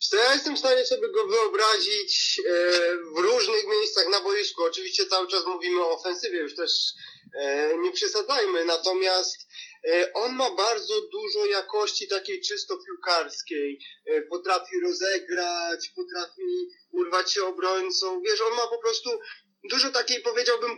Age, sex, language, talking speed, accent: 30-49, male, Polish, 130 wpm, native